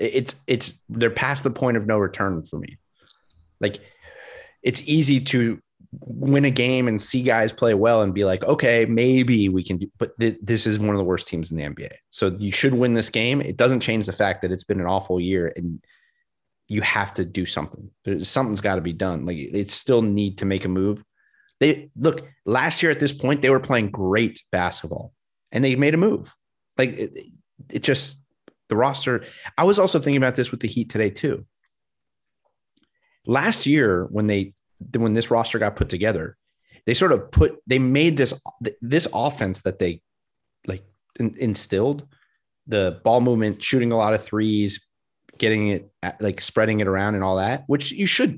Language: English